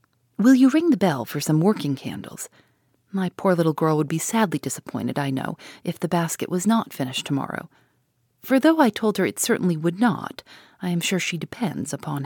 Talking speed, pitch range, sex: 200 wpm, 140-200 Hz, female